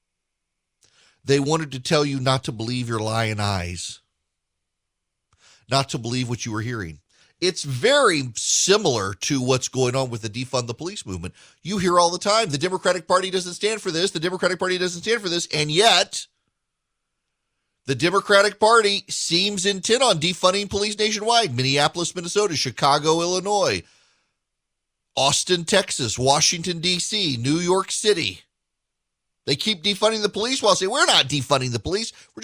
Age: 40-59